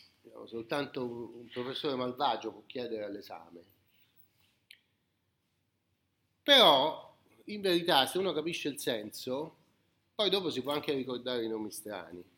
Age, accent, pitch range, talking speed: 40-59, native, 125-195 Hz, 115 wpm